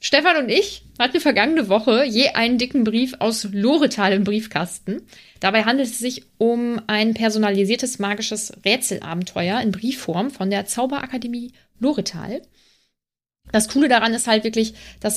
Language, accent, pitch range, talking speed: German, German, 205-250 Hz, 140 wpm